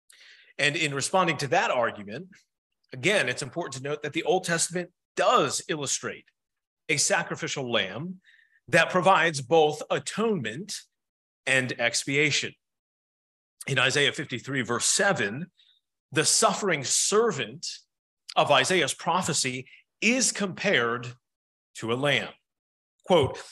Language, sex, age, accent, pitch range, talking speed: English, male, 40-59, American, 130-180 Hz, 110 wpm